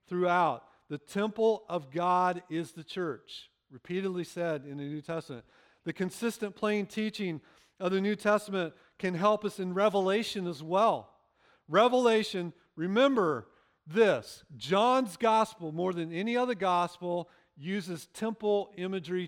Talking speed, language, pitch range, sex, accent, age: 130 wpm, English, 165-215 Hz, male, American, 50-69